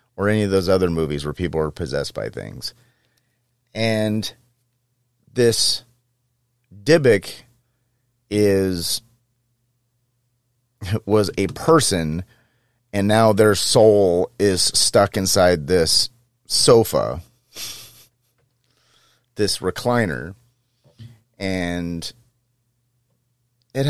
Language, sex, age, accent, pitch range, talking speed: English, male, 30-49, American, 95-120 Hz, 80 wpm